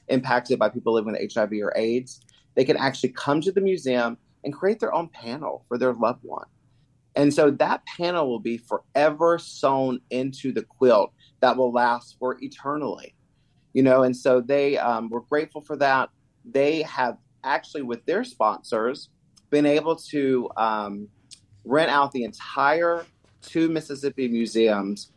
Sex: male